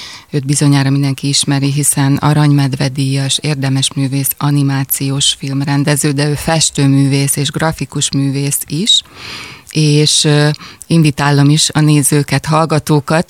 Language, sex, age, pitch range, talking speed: Hungarian, female, 20-39, 140-155 Hz, 105 wpm